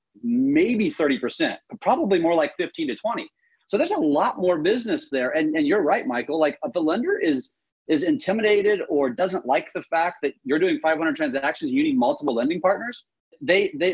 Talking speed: 190 wpm